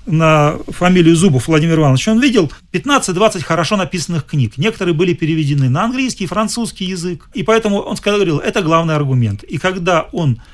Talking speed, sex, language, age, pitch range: 165 wpm, male, Russian, 40-59, 140-185 Hz